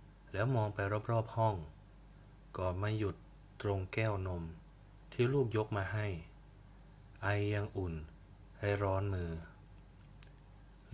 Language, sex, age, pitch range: Thai, male, 20-39, 90-110 Hz